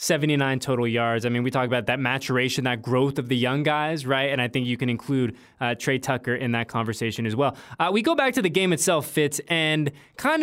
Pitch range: 135-180 Hz